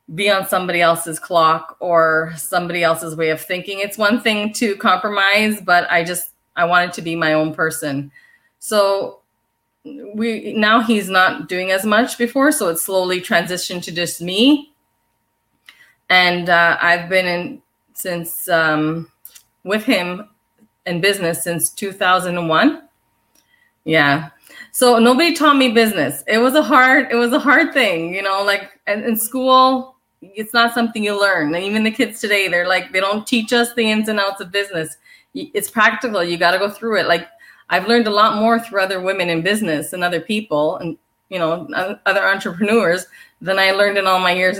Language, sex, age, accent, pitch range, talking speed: English, female, 20-39, American, 175-230 Hz, 175 wpm